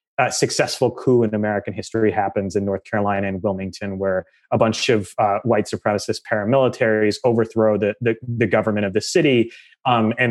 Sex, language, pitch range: male, English, 105-140 Hz